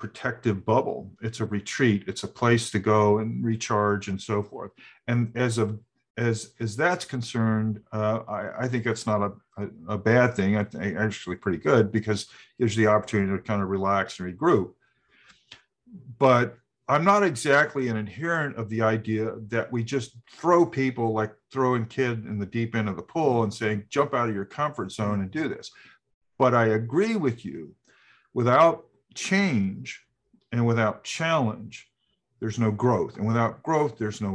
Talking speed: 175 wpm